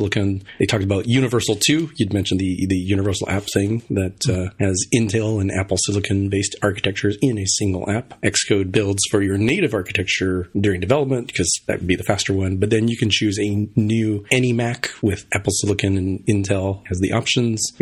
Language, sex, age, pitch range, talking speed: English, male, 30-49, 95-110 Hz, 195 wpm